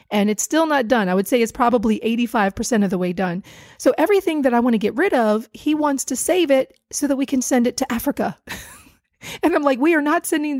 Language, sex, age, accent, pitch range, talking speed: English, female, 30-49, American, 215-290 Hz, 250 wpm